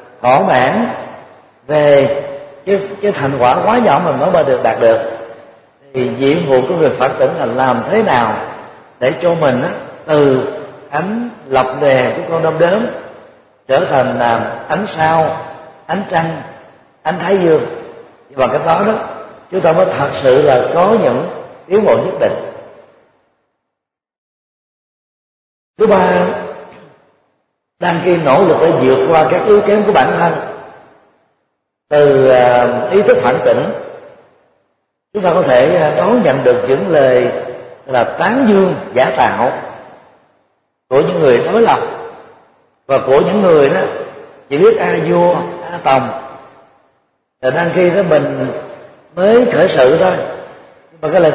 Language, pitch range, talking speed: Vietnamese, 135-195 Hz, 150 wpm